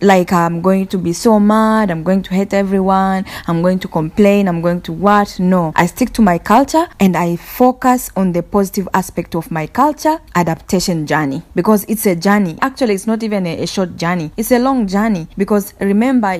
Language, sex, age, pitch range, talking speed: English, female, 20-39, 175-220 Hz, 205 wpm